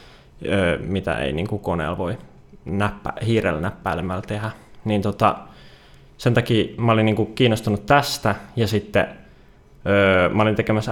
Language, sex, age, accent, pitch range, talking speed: Finnish, male, 20-39, native, 95-110 Hz, 130 wpm